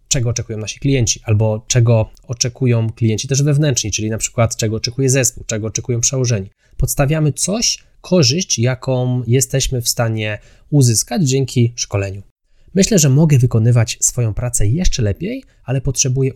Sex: male